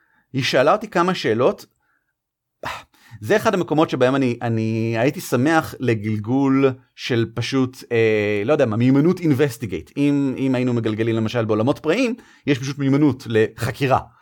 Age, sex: 30-49, male